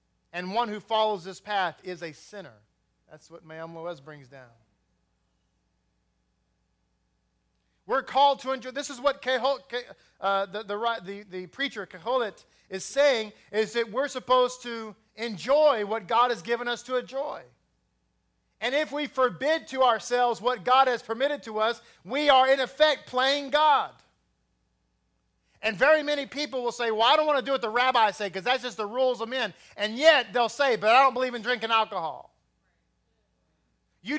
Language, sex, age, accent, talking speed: English, male, 40-59, American, 175 wpm